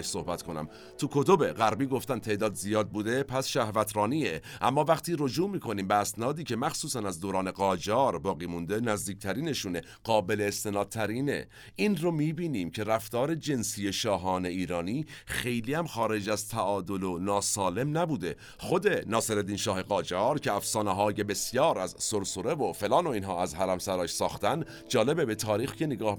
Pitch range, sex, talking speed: 95-125 Hz, male, 155 wpm